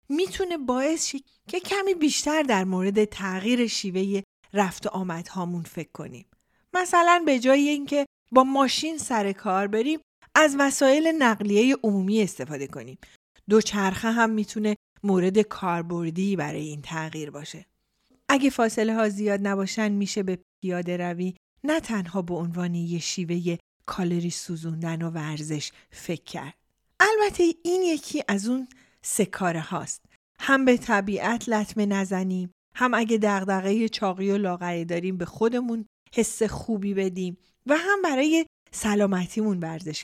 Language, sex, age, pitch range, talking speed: Persian, female, 40-59, 185-270 Hz, 135 wpm